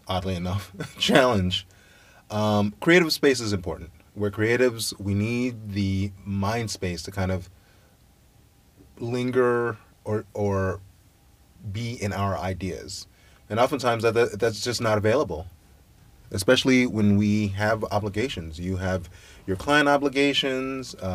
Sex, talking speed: male, 120 wpm